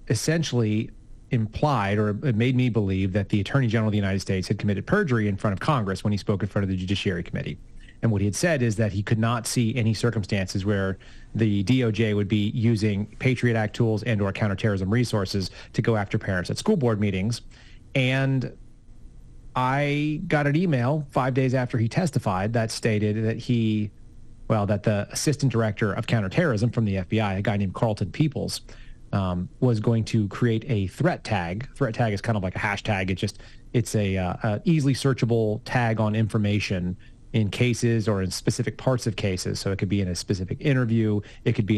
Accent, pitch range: American, 100-120 Hz